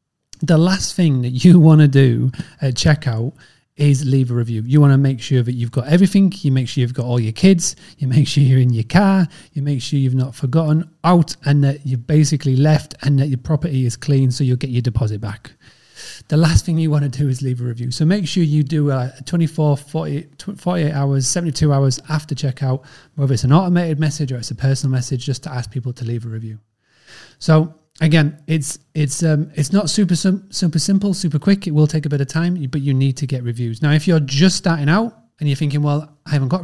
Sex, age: male, 30-49